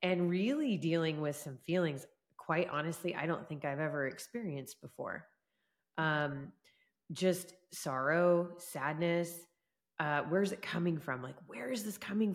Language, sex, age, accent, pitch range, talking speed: English, female, 30-49, American, 150-185 Hz, 140 wpm